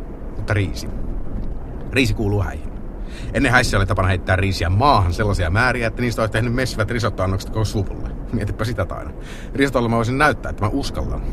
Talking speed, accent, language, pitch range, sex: 160 wpm, native, Finnish, 95-120 Hz, male